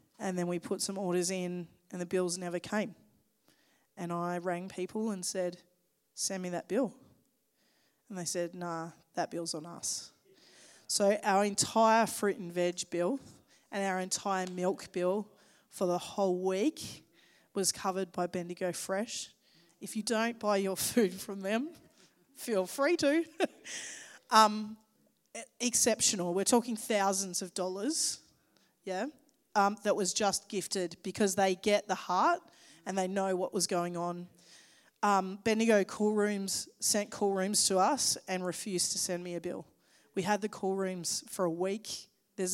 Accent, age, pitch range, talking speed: Australian, 20-39, 180-215 Hz, 160 wpm